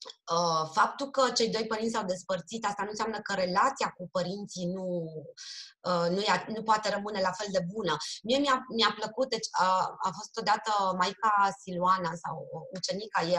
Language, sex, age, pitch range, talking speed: Romanian, female, 20-39, 180-245 Hz, 170 wpm